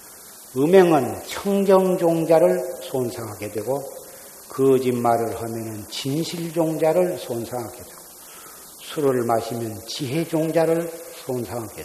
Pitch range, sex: 125-195 Hz, male